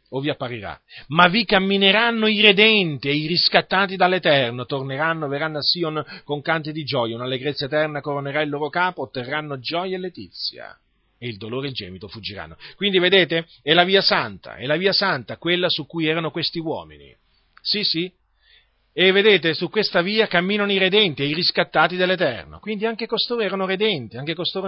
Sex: male